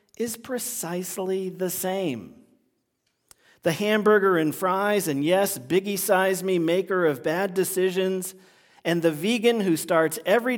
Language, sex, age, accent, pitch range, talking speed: English, male, 40-59, American, 145-205 Hz, 120 wpm